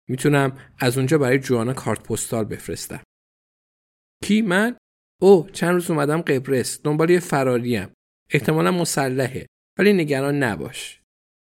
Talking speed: 120 wpm